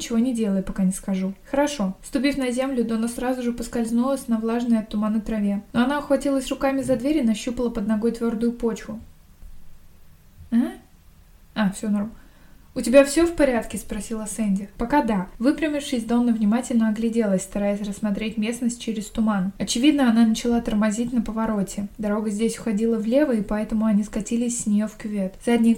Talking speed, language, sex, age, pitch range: 170 wpm, Russian, female, 20-39, 215-240 Hz